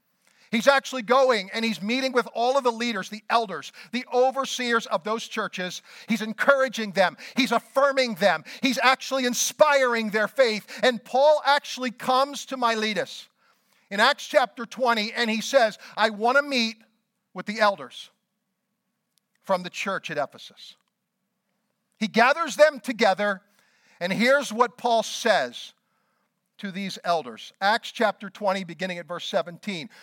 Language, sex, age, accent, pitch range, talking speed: English, male, 50-69, American, 200-245 Hz, 145 wpm